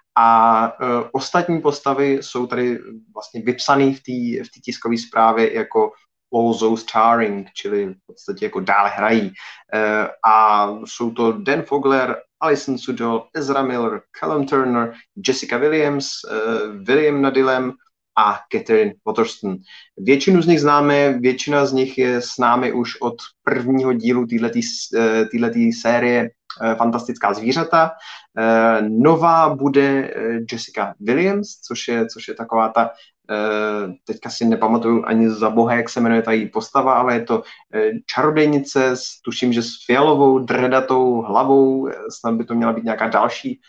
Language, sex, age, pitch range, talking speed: Czech, male, 30-49, 115-140 Hz, 135 wpm